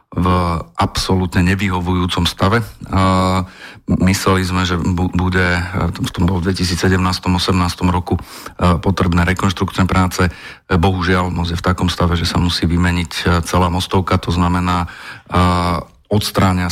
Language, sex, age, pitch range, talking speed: Slovak, male, 40-59, 90-95 Hz, 105 wpm